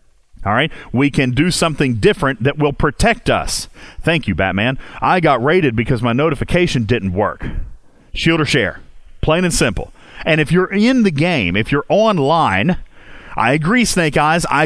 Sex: male